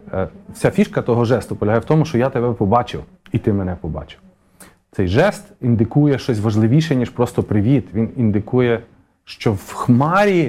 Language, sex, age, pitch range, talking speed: Ukrainian, male, 40-59, 110-145 Hz, 160 wpm